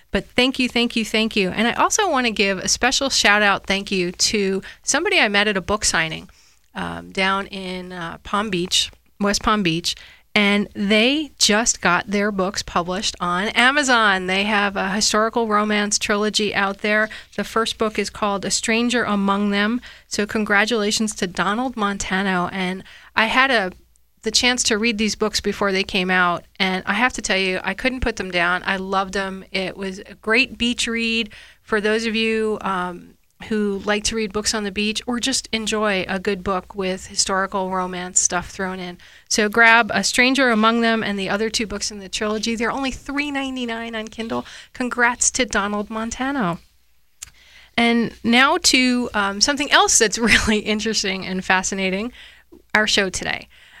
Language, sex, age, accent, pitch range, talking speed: English, female, 30-49, American, 195-230 Hz, 180 wpm